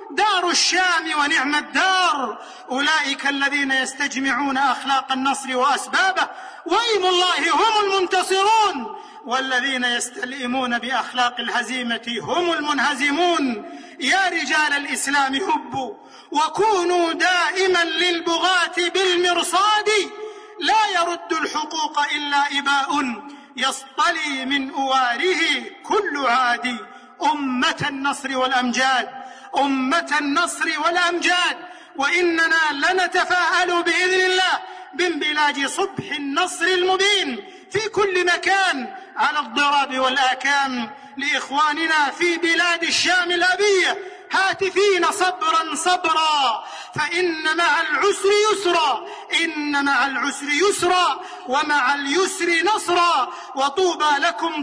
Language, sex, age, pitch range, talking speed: Arabic, male, 40-59, 280-370 Hz, 85 wpm